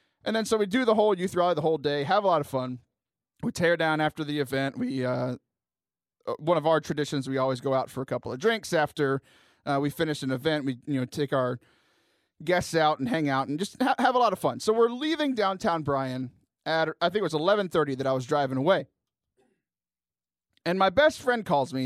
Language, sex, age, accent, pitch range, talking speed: English, male, 30-49, American, 135-200 Hz, 230 wpm